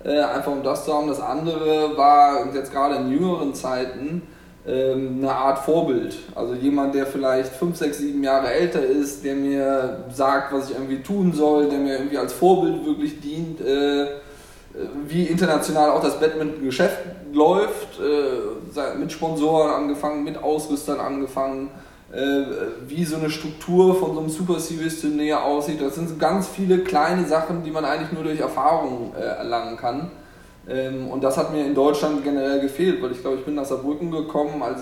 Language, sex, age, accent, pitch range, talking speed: German, male, 20-39, German, 135-160 Hz, 180 wpm